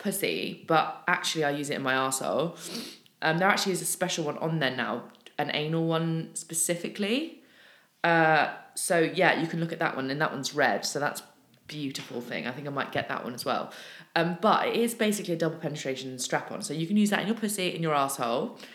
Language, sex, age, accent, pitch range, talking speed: English, female, 20-39, British, 150-200 Hz, 225 wpm